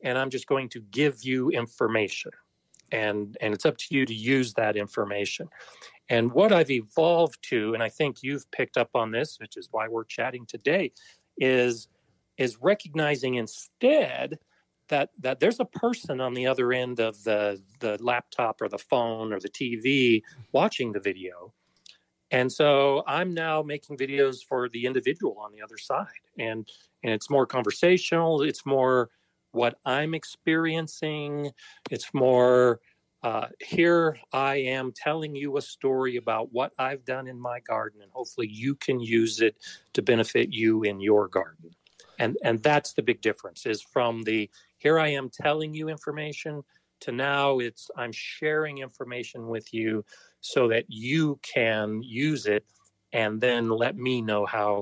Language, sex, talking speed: English, male, 165 wpm